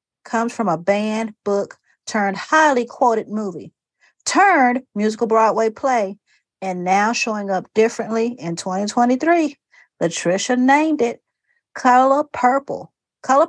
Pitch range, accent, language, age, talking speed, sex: 190-240 Hz, American, English, 40-59, 115 wpm, female